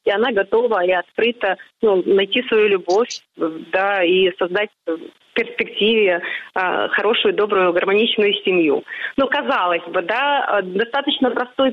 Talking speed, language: 135 wpm, Russian